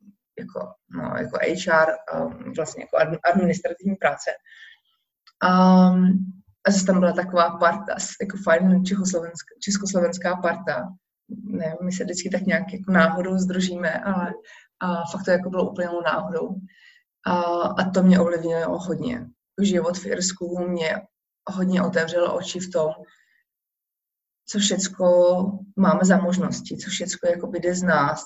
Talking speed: 130 wpm